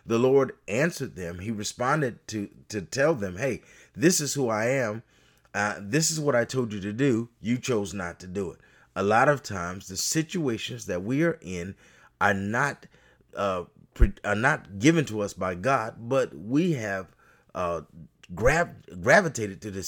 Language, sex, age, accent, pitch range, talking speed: English, male, 30-49, American, 85-130 Hz, 170 wpm